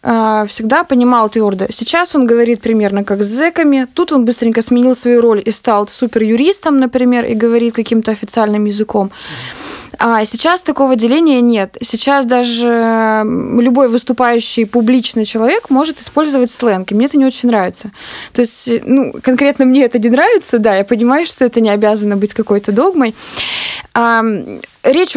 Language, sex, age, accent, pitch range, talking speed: Russian, female, 20-39, native, 220-255 Hz, 155 wpm